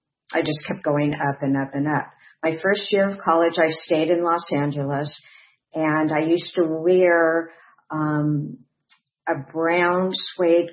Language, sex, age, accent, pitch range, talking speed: English, female, 50-69, American, 150-180 Hz, 155 wpm